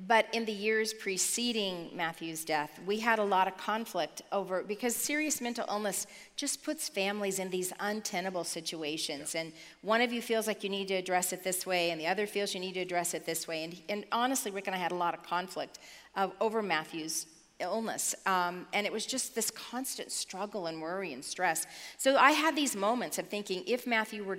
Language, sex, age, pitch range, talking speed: English, female, 40-59, 180-225 Hz, 210 wpm